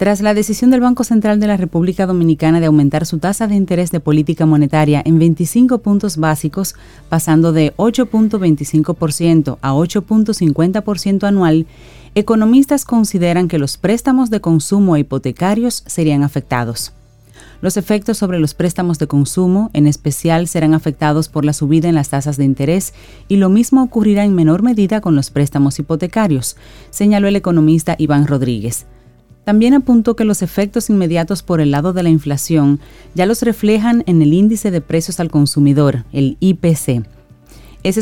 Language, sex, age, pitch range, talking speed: Spanish, female, 30-49, 150-200 Hz, 160 wpm